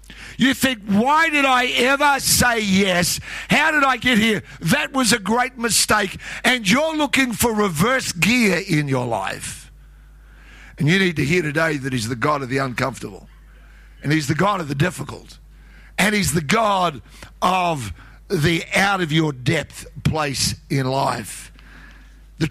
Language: English